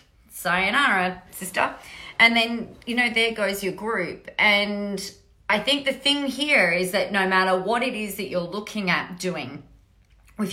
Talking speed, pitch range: 165 wpm, 175-215 Hz